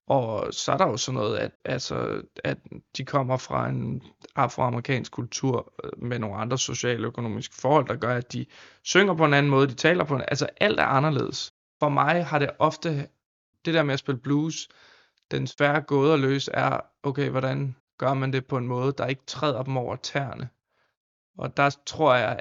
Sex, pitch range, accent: male, 130-155 Hz, native